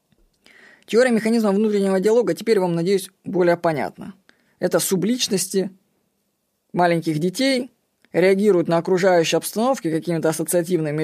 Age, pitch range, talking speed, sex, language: 20-39, 165-205 Hz, 105 wpm, female, Russian